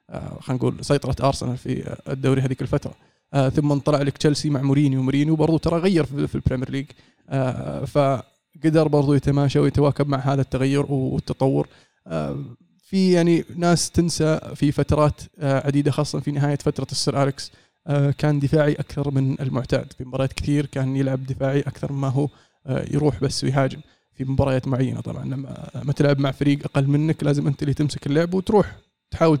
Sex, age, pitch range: male, 20-39, 135-150 Hz